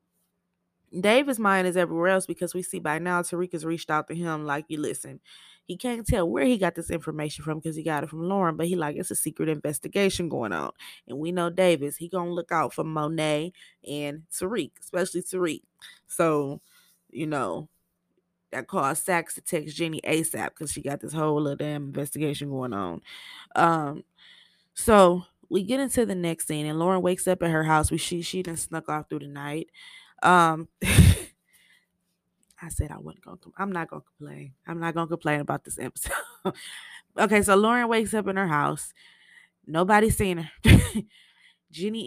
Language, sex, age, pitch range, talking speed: English, female, 20-39, 150-185 Hz, 190 wpm